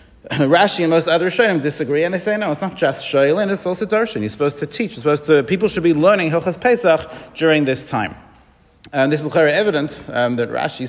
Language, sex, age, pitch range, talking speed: English, male, 30-49, 135-175 Hz, 225 wpm